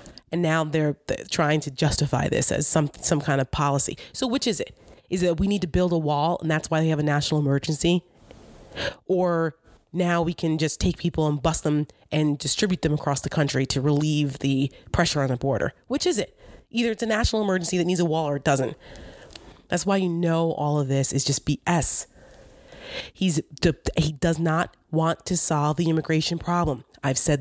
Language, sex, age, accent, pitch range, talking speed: English, female, 30-49, American, 145-175 Hz, 205 wpm